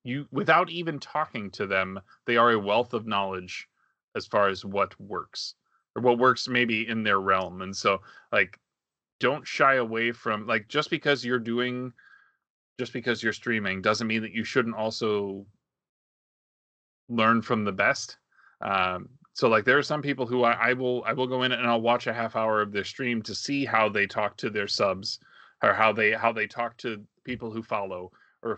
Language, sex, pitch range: English, male, 105-125 Hz